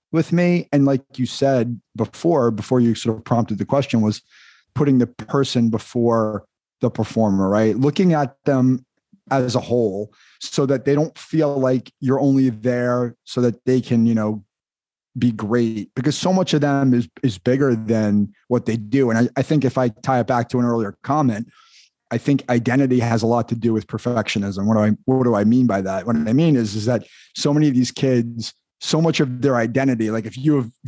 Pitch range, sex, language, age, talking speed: 115-135 Hz, male, English, 30-49, 210 wpm